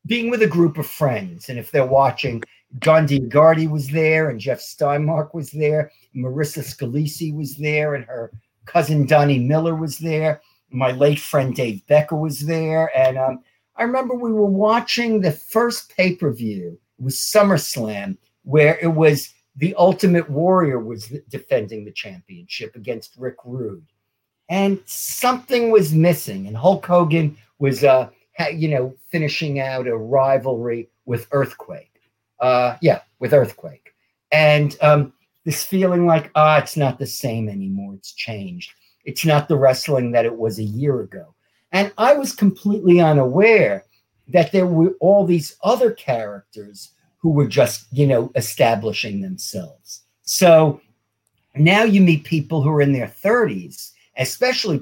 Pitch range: 125-165 Hz